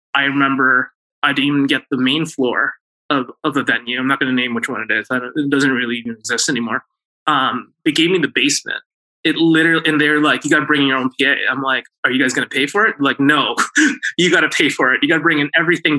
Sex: male